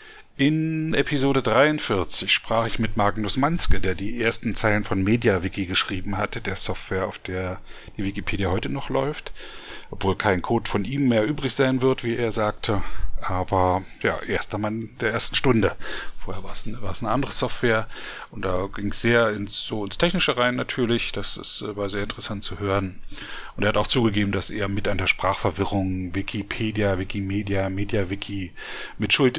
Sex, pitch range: male, 95-120 Hz